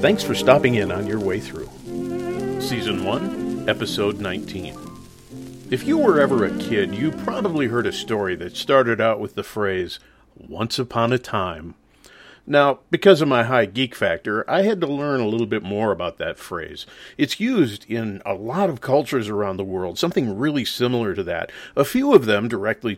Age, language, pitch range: 50-69, English, 100-130 Hz